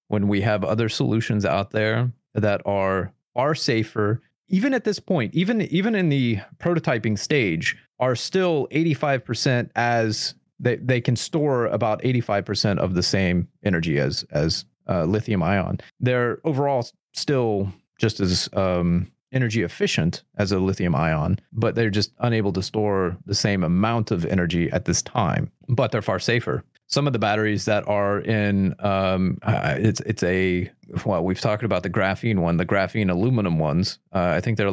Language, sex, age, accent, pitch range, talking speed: English, male, 30-49, American, 100-130 Hz, 170 wpm